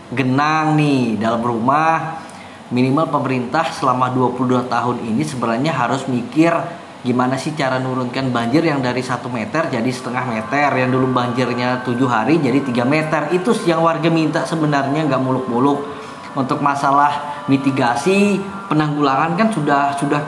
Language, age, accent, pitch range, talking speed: Indonesian, 20-39, native, 125-150 Hz, 140 wpm